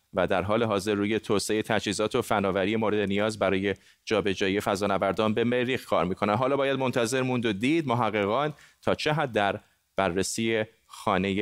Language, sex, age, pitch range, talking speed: Persian, male, 30-49, 105-130 Hz, 170 wpm